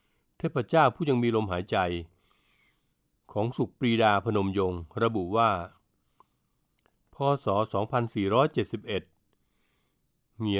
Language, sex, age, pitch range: Thai, male, 60-79, 105-140 Hz